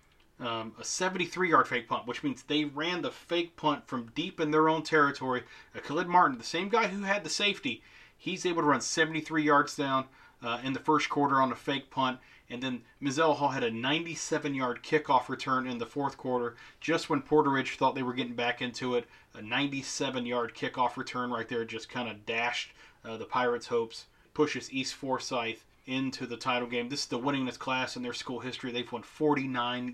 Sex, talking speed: male, 200 wpm